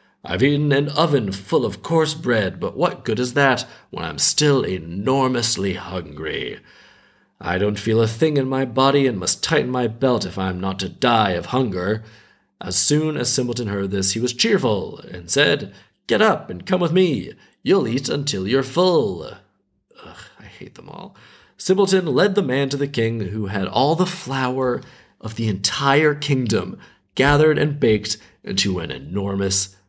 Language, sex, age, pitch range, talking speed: English, male, 40-59, 110-165 Hz, 175 wpm